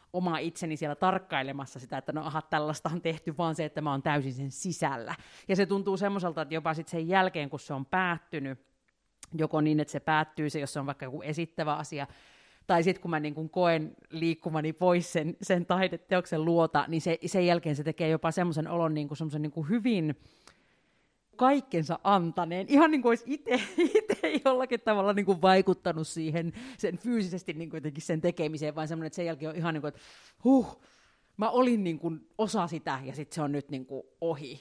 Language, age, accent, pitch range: Finnish, 30-49, native, 145-180 Hz